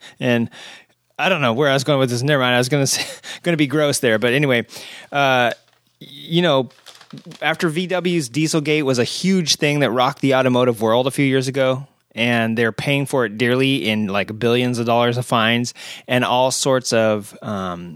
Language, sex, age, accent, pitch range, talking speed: English, male, 30-49, American, 120-140 Hz, 195 wpm